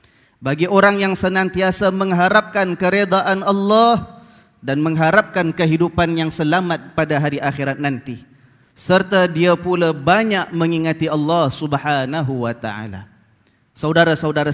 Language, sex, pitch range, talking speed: Malay, male, 160-200 Hz, 105 wpm